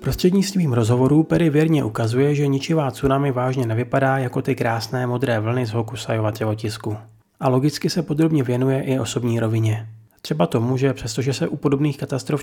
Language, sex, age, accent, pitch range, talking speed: Czech, male, 30-49, native, 115-140 Hz, 165 wpm